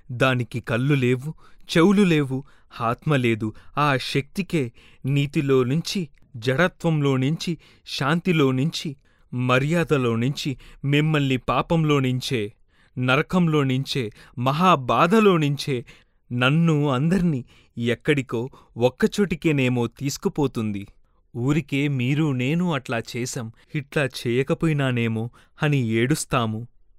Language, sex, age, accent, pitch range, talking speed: Telugu, male, 30-49, native, 125-165 Hz, 60 wpm